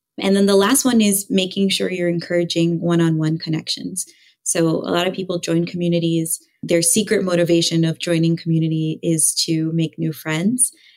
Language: English